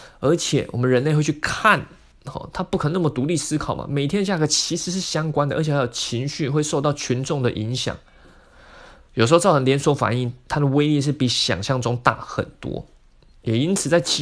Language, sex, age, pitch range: Chinese, male, 20-39, 135-185 Hz